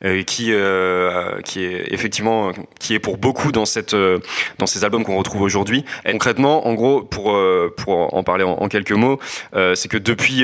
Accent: French